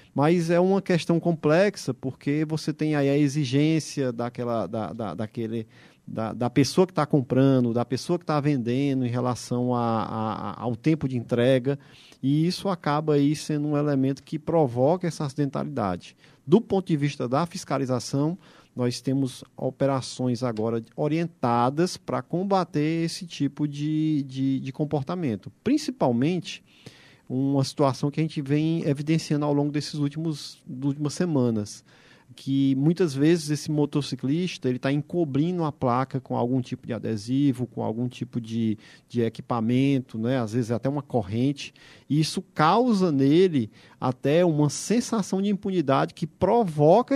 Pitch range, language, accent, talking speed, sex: 125-160 Hz, Portuguese, Brazilian, 140 wpm, male